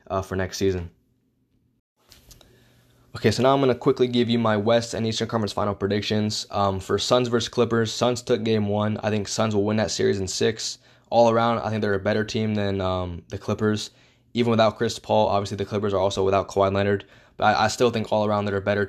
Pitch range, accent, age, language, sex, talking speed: 100-115 Hz, American, 20-39, English, male, 230 wpm